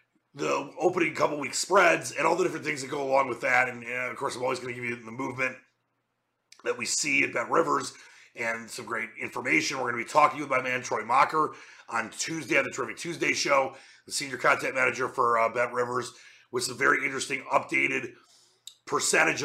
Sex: male